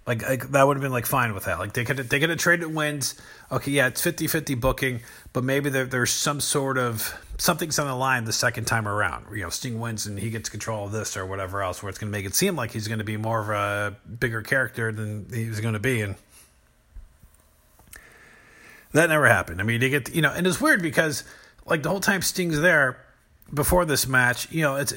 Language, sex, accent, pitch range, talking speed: English, male, American, 110-145 Hz, 245 wpm